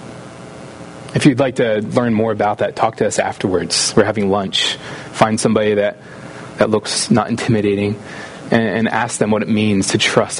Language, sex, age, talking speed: English, male, 30-49, 180 wpm